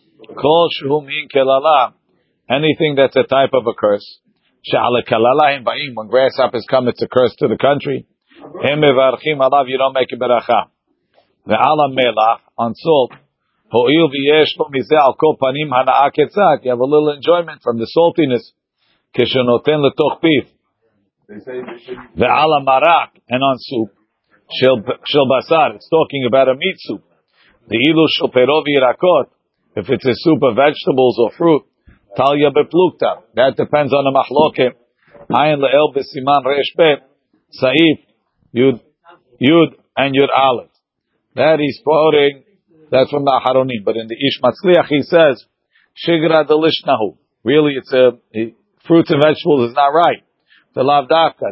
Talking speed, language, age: 145 wpm, English, 50-69